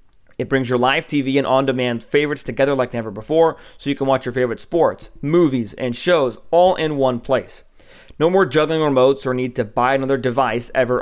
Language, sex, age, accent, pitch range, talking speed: English, male, 30-49, American, 130-160 Hz, 200 wpm